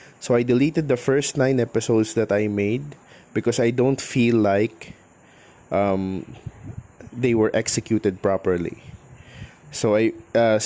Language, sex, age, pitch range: Filipino, male, 20-39, 105-130 Hz